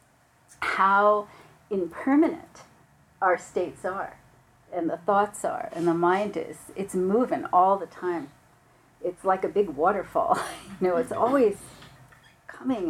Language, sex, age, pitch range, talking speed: English, female, 40-59, 180-225 Hz, 130 wpm